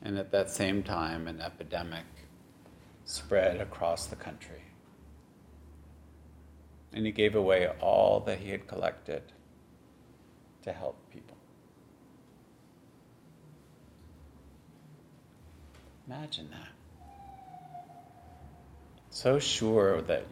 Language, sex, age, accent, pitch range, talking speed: English, male, 50-69, American, 80-110 Hz, 85 wpm